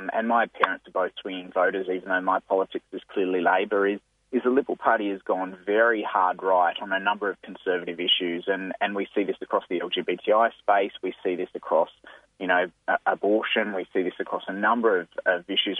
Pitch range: 95-125 Hz